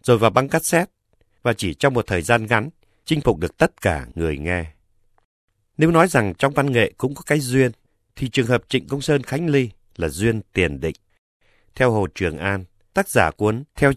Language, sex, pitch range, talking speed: Vietnamese, male, 95-135 Hz, 205 wpm